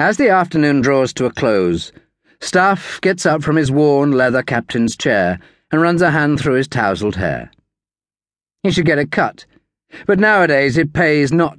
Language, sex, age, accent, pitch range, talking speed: English, male, 40-59, British, 105-165 Hz, 175 wpm